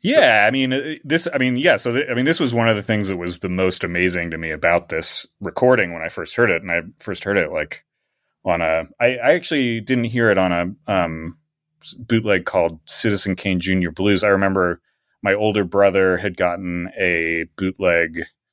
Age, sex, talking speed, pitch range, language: 30-49, male, 205 wpm, 85-110 Hz, English